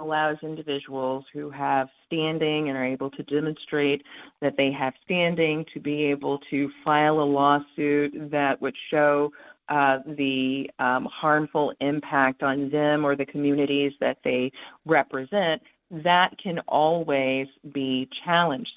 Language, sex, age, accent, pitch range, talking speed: English, female, 40-59, American, 140-160 Hz, 135 wpm